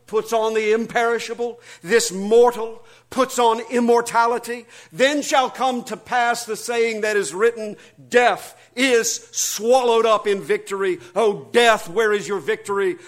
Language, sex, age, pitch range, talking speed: English, male, 50-69, 175-240 Hz, 140 wpm